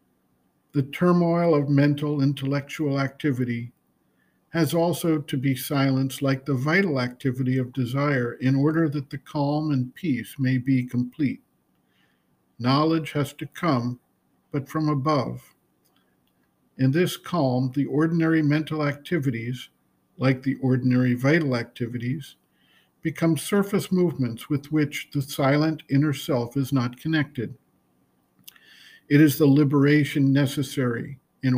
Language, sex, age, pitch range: English, male, 50-69, 130-150 Hz